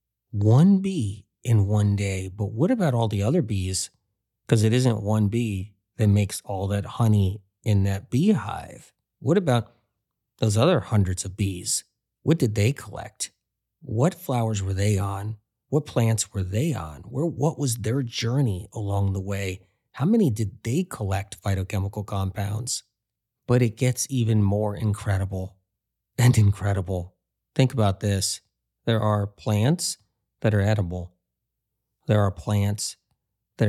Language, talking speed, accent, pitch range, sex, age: English, 145 wpm, American, 100-115 Hz, male, 30-49